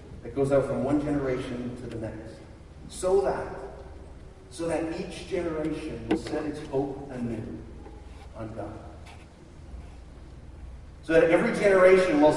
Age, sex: 40-59, male